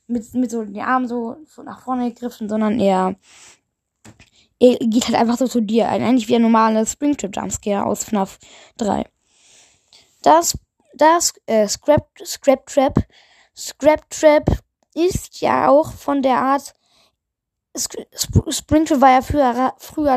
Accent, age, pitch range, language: German, 20-39, 220-275 Hz, German